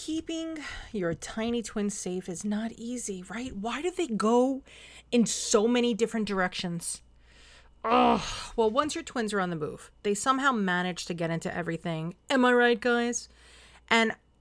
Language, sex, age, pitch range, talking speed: English, female, 30-49, 190-245 Hz, 160 wpm